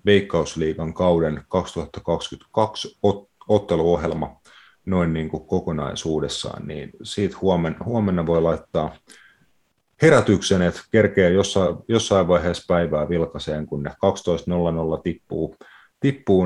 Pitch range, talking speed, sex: 80-95 Hz, 90 wpm, male